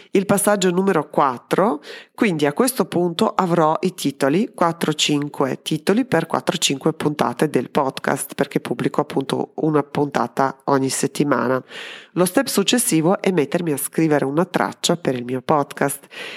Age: 30-49